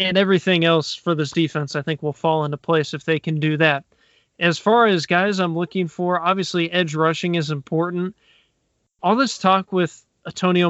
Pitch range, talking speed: 155-180 Hz, 190 wpm